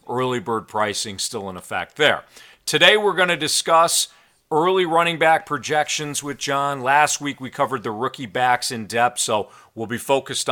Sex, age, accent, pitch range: male, 40-59, American, 105-140 Hz